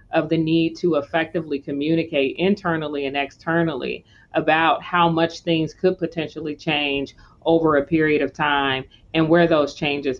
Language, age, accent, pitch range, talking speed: English, 40-59, American, 140-170 Hz, 145 wpm